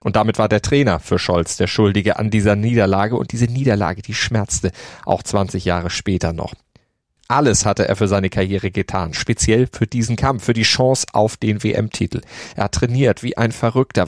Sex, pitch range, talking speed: male, 95-120 Hz, 190 wpm